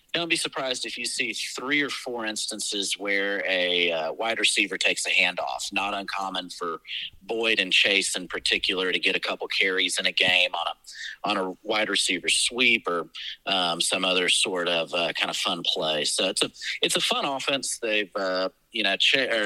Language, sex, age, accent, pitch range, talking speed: English, male, 30-49, American, 95-120 Hz, 195 wpm